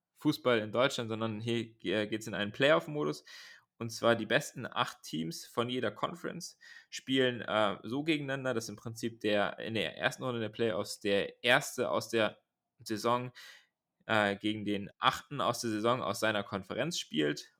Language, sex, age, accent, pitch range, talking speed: German, male, 20-39, German, 100-120 Hz, 165 wpm